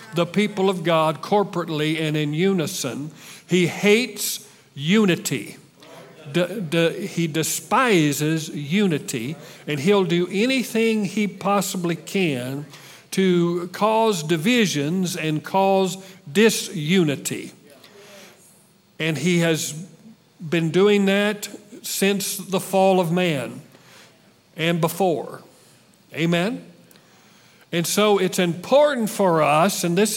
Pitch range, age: 165-205 Hz, 50-69